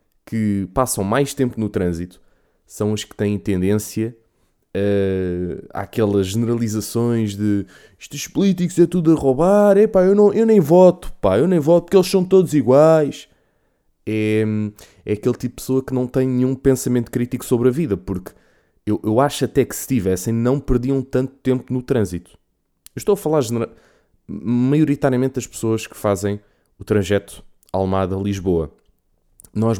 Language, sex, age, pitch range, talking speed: Portuguese, male, 20-39, 100-130 Hz, 145 wpm